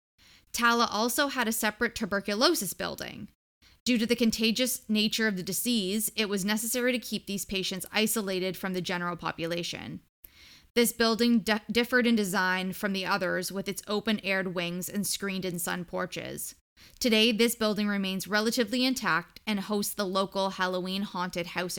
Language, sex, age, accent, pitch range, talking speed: English, female, 10-29, American, 185-225 Hz, 155 wpm